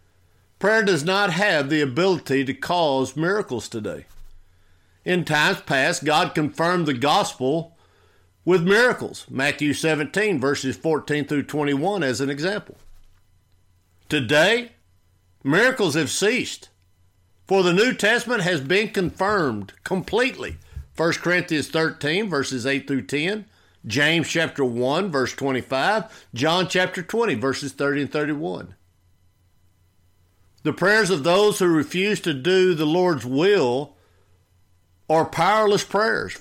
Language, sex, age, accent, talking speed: English, male, 50-69, American, 120 wpm